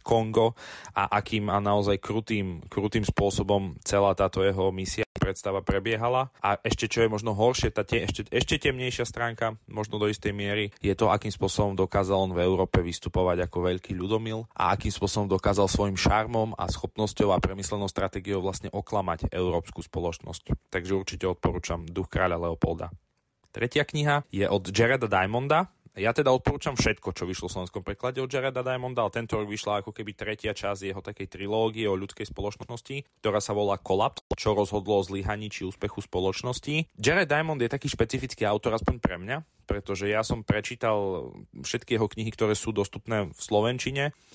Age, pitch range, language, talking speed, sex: 20-39, 100-120 Hz, Slovak, 170 wpm, male